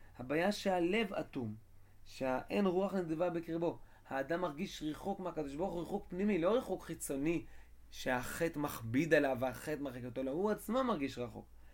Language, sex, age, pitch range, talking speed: Hebrew, male, 20-39, 140-180 Hz, 150 wpm